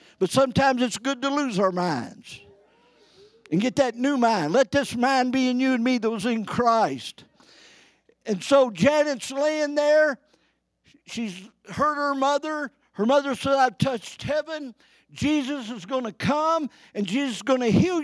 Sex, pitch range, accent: male, 220-280 Hz, American